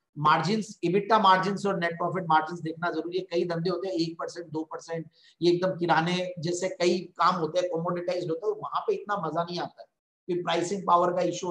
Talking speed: 65 wpm